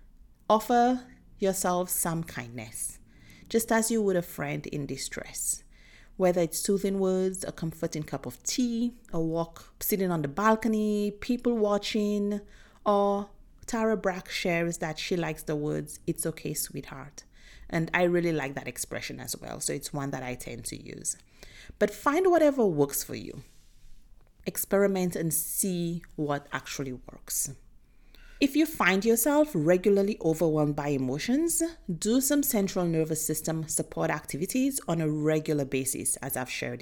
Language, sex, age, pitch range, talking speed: English, female, 30-49, 150-215 Hz, 150 wpm